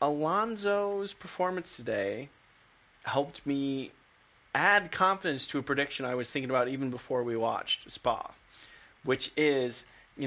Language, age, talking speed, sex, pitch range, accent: English, 30-49, 130 wpm, male, 110-145 Hz, American